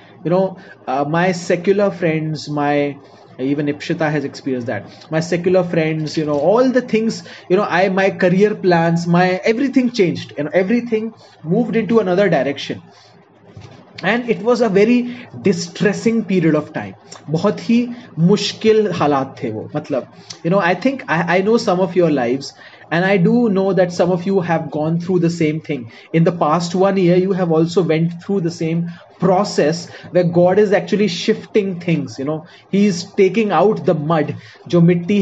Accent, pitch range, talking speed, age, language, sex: native, 155-200 Hz, 180 wpm, 30-49, Hindi, male